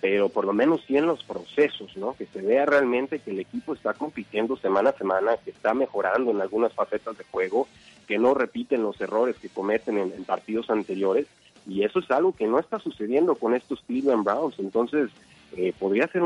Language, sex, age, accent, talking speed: Spanish, male, 40-59, Mexican, 205 wpm